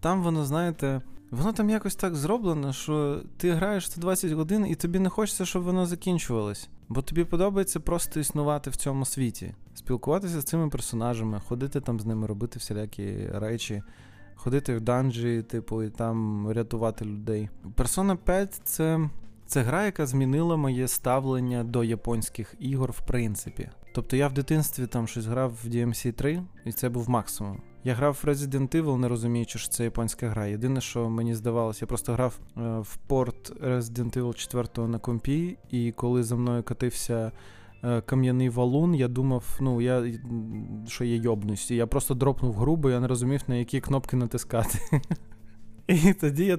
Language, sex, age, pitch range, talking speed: Ukrainian, male, 20-39, 115-145 Hz, 165 wpm